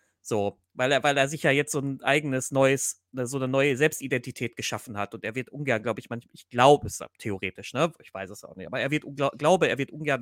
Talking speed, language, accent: 245 wpm, German, German